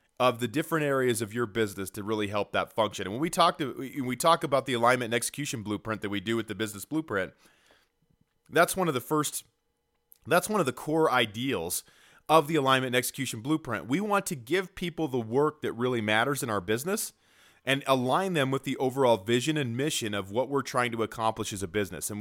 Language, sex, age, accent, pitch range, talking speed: English, male, 30-49, American, 110-135 Hz, 220 wpm